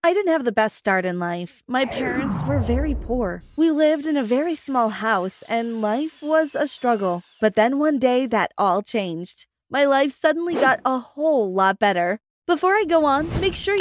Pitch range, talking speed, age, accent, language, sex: 210-290 Hz, 200 wpm, 20-39, American, English, female